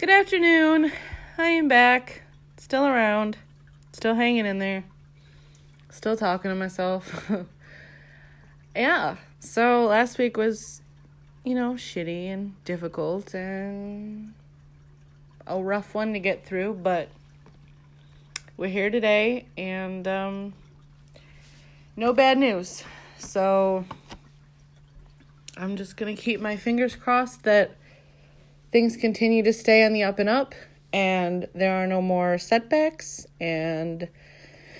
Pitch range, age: 145-225 Hz, 30-49